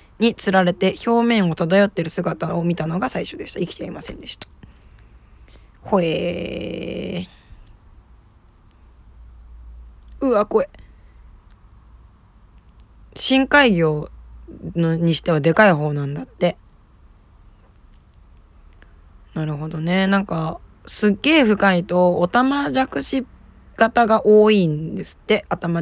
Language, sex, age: Japanese, female, 20-39